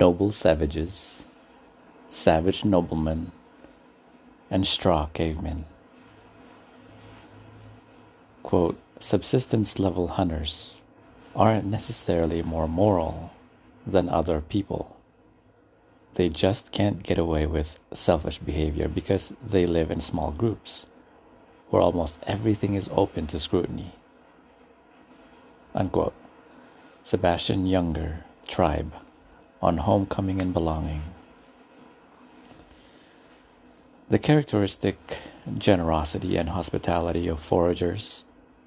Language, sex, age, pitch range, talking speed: English, male, 50-69, 80-105 Hz, 80 wpm